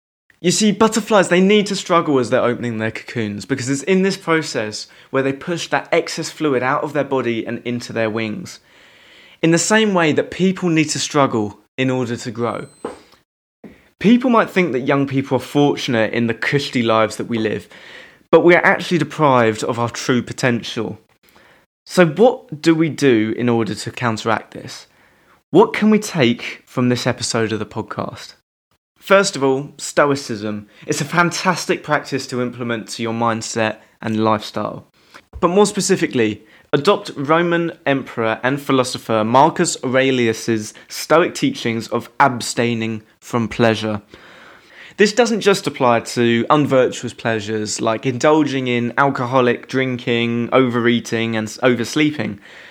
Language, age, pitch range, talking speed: English, 20-39, 115-160 Hz, 155 wpm